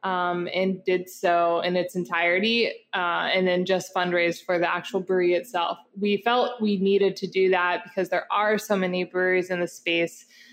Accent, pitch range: American, 185-215 Hz